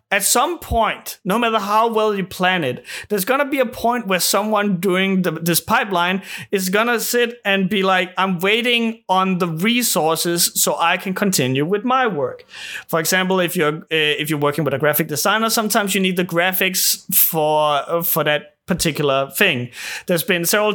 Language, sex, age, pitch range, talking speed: English, male, 30-49, 165-210 Hz, 190 wpm